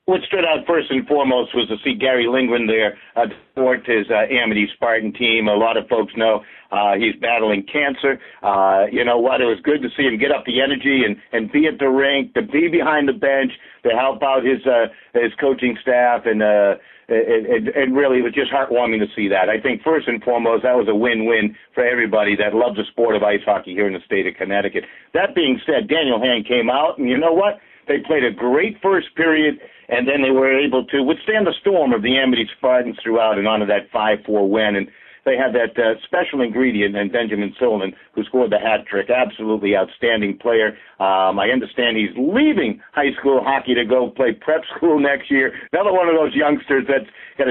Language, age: English, 60-79